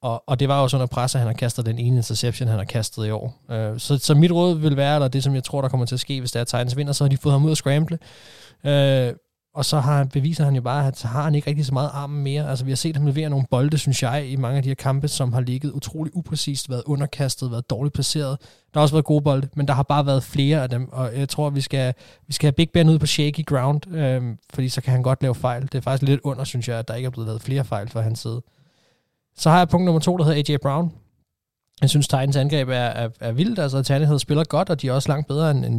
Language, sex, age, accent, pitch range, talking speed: Danish, male, 20-39, native, 125-150 Hz, 290 wpm